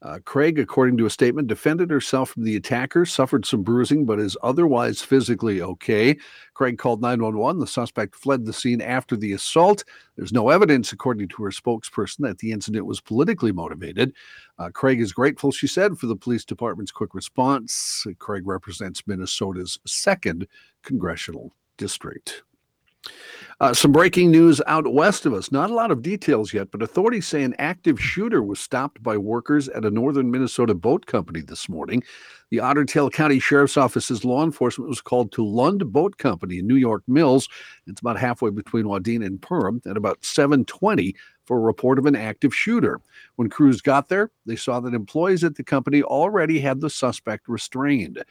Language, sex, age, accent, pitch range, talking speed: English, male, 50-69, American, 110-145 Hz, 180 wpm